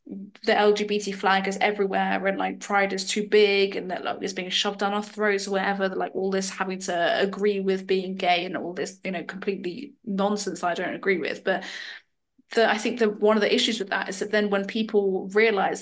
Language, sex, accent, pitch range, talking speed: English, female, British, 195-230 Hz, 220 wpm